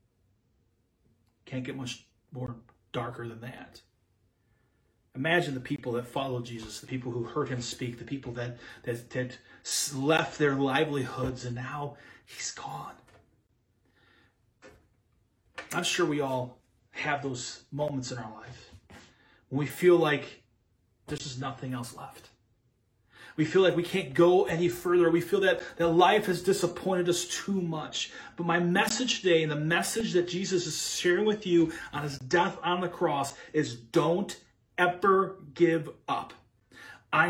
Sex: male